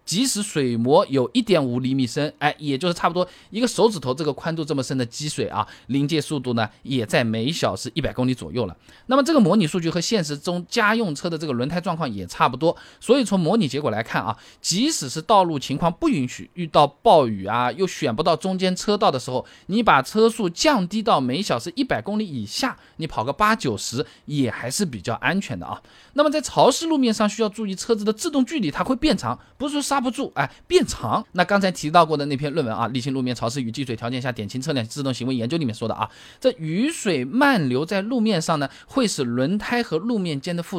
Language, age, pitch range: Chinese, 20-39, 130-205 Hz